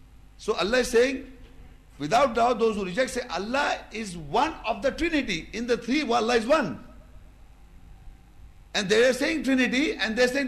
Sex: male